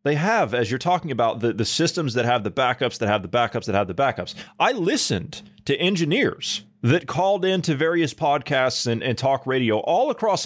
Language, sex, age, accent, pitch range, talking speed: English, male, 30-49, American, 105-145 Hz, 210 wpm